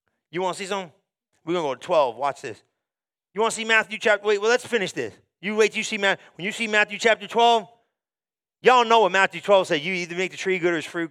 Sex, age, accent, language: male, 30-49, American, English